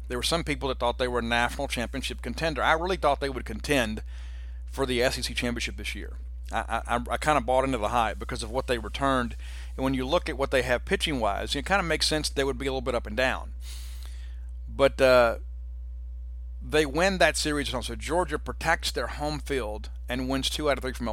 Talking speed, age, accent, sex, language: 225 wpm, 50-69, American, male, English